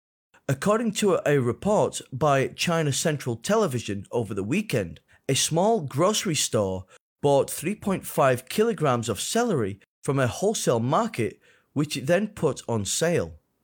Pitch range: 120-185 Hz